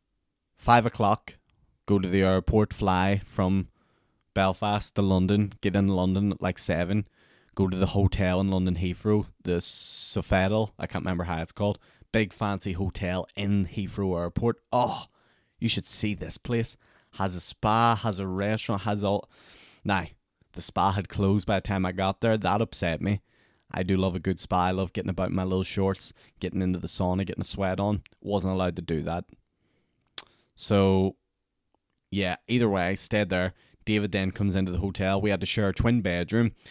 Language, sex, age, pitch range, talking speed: English, male, 10-29, 95-110 Hz, 185 wpm